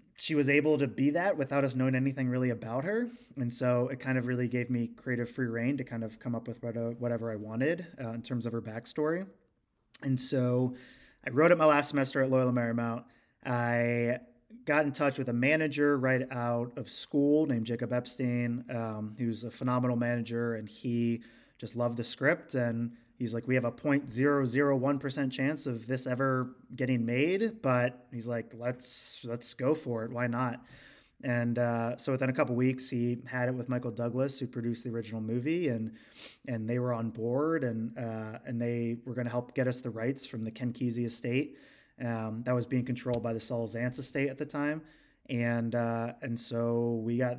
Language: English